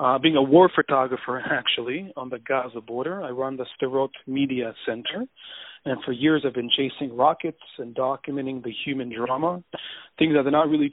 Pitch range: 130-150 Hz